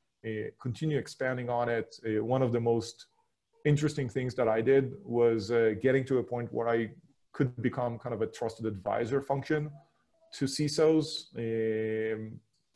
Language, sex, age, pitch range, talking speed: English, male, 30-49, 115-140 Hz, 160 wpm